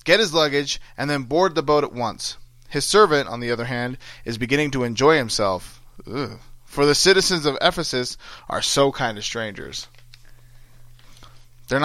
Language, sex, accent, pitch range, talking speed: English, male, American, 120-150 Hz, 165 wpm